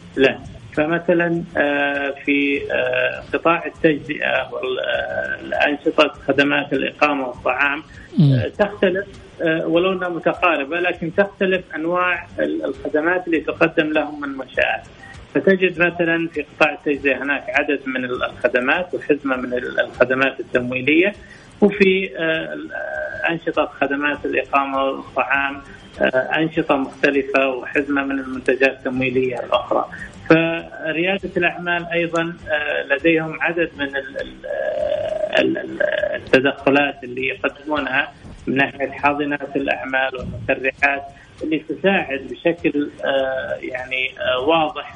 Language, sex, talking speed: English, male, 90 wpm